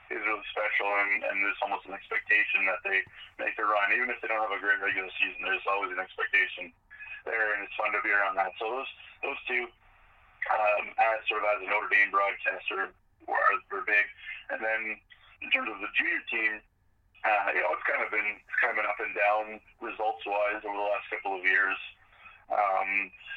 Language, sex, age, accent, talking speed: English, male, 30-49, American, 210 wpm